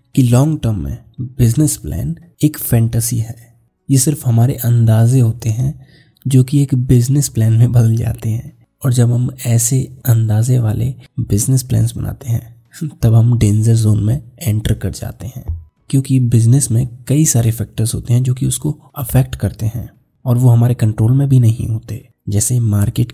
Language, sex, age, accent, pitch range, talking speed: Hindi, male, 20-39, native, 115-130 Hz, 175 wpm